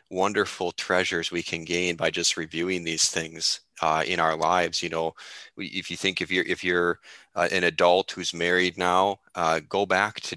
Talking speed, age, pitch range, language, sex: 190 wpm, 30-49, 80-90 Hz, English, male